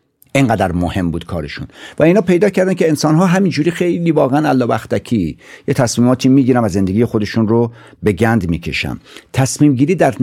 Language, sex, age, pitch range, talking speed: Persian, male, 60-79, 100-135 Hz, 155 wpm